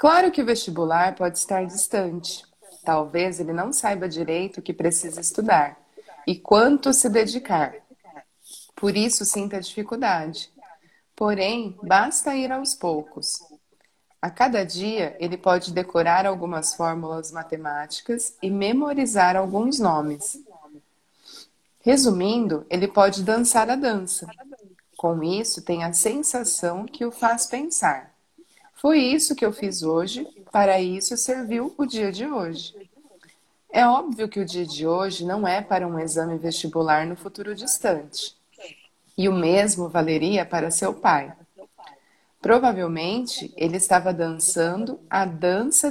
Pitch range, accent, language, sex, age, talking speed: 175-240 Hz, Brazilian, Portuguese, female, 30-49, 130 wpm